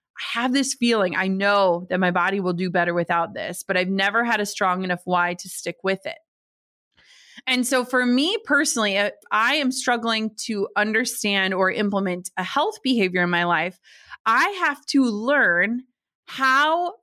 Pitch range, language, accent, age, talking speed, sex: 200-270 Hz, English, American, 30-49, 175 wpm, female